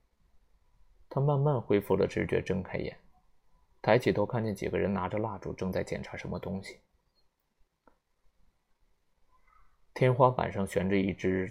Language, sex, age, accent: Chinese, male, 20-39, native